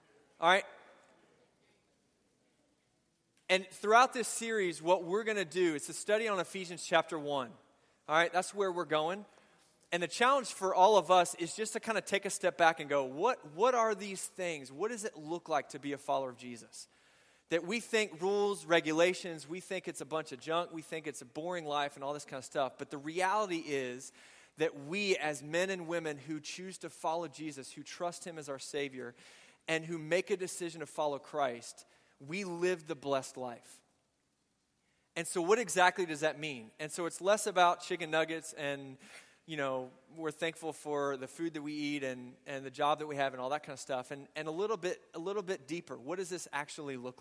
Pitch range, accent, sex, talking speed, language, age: 145-185 Hz, American, male, 215 wpm, English, 20-39